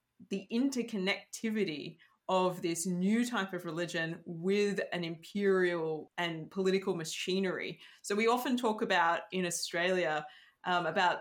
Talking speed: 125 wpm